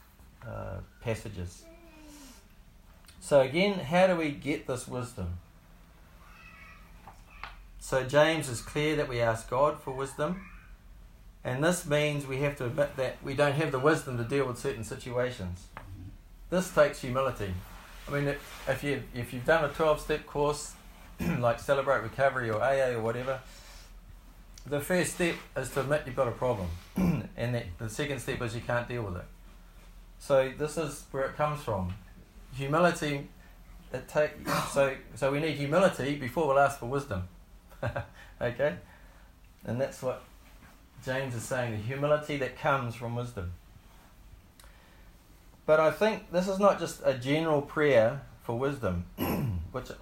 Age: 40-59